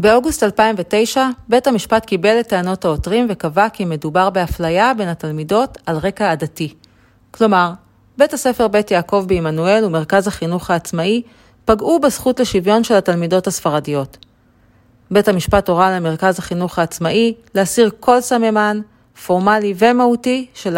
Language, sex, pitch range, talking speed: Hebrew, female, 165-220 Hz, 125 wpm